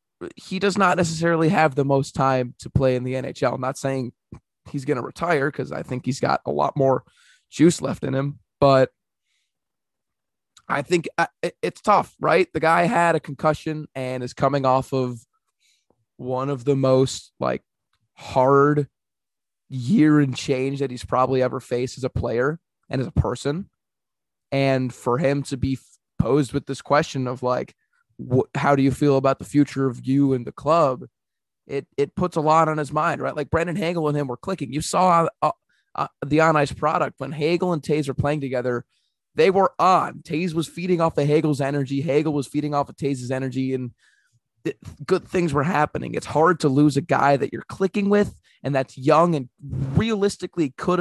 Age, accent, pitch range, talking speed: 20-39, American, 130-160 Hz, 190 wpm